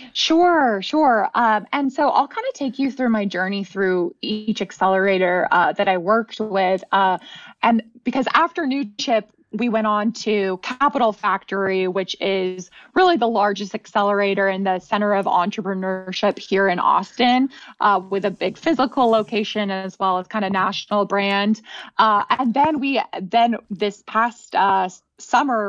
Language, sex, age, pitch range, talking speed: English, female, 20-39, 190-235 Hz, 160 wpm